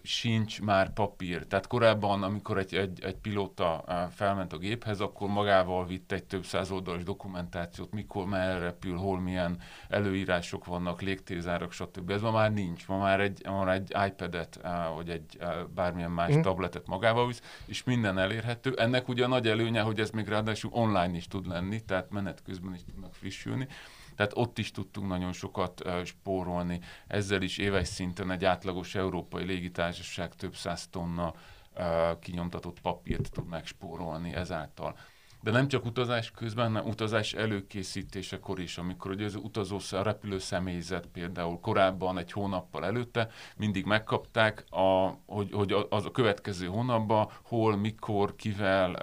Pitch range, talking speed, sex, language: 90-105 Hz, 155 wpm, male, Hungarian